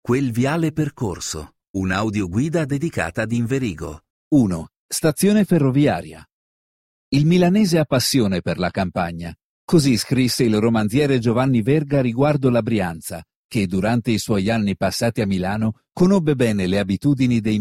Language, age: Italian, 50-69